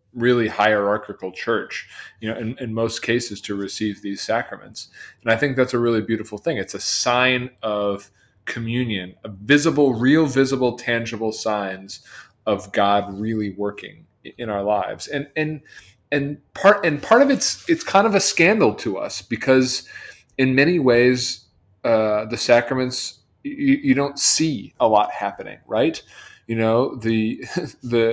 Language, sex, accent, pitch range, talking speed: English, male, American, 110-135 Hz, 155 wpm